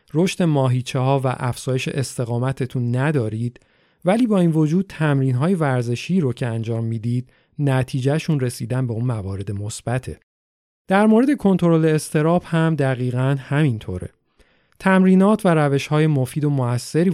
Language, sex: Persian, male